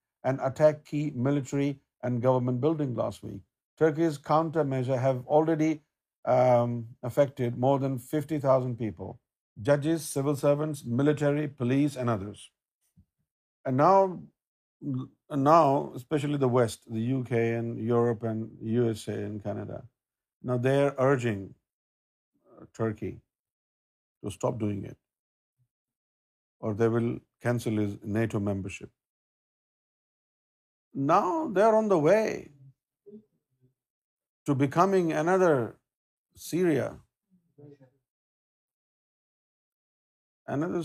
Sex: male